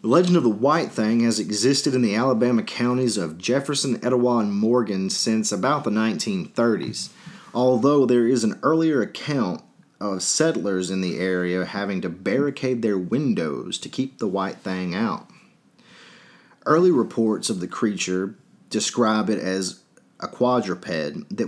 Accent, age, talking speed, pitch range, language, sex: American, 30-49, 150 wpm, 105-140 Hz, English, male